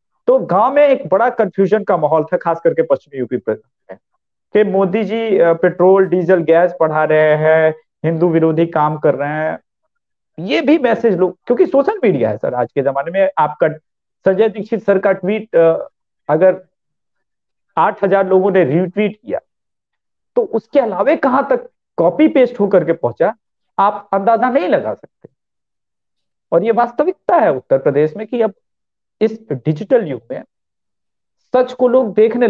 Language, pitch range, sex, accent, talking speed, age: English, 160-240 Hz, male, Indian, 135 wpm, 50-69